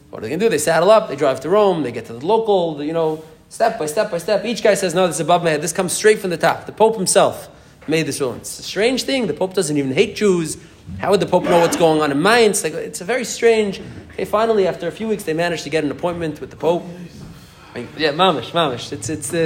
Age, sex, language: 20-39, male, English